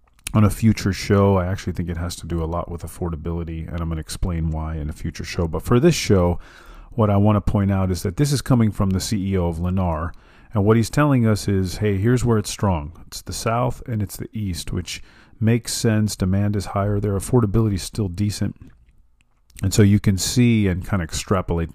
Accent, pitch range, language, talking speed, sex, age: American, 85-110 Hz, English, 230 wpm, male, 40-59